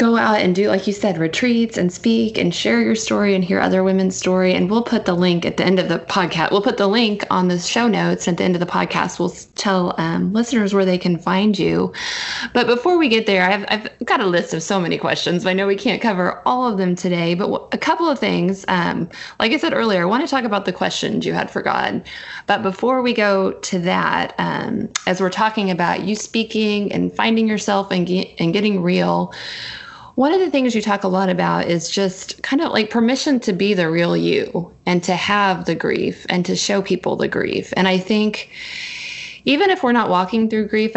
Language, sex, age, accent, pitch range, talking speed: English, female, 20-39, American, 180-220 Hz, 240 wpm